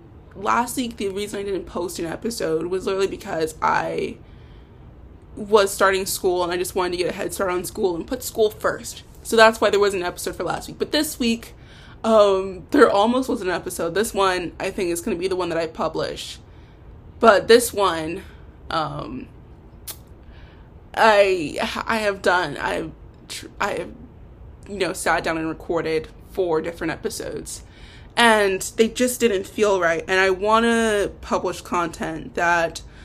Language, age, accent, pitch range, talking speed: English, 20-39, American, 180-225 Hz, 175 wpm